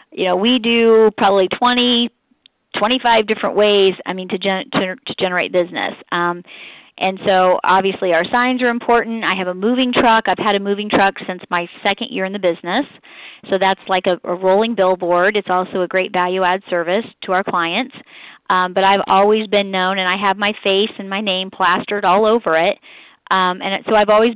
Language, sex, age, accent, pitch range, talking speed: English, female, 30-49, American, 180-215 Hz, 195 wpm